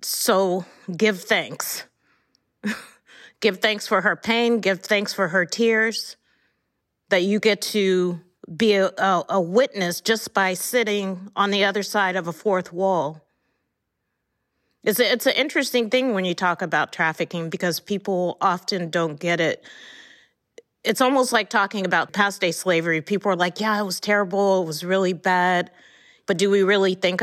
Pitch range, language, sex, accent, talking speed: 175-210 Hz, English, female, American, 160 wpm